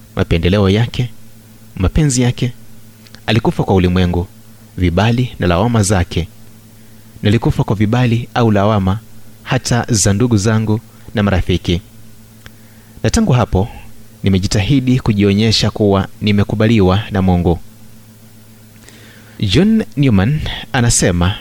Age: 30-49